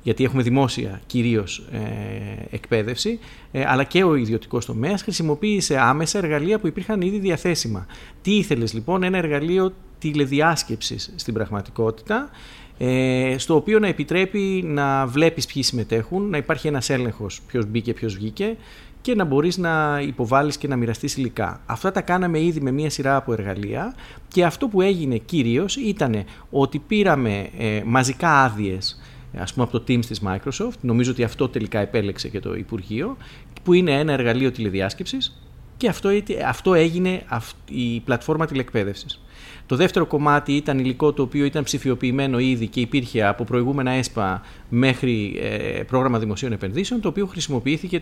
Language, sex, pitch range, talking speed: Greek, male, 115-170 Hz, 150 wpm